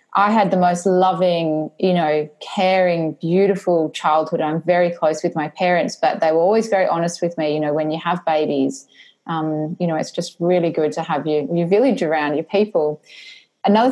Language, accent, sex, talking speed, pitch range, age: English, Australian, female, 195 wpm, 155-185 Hz, 20-39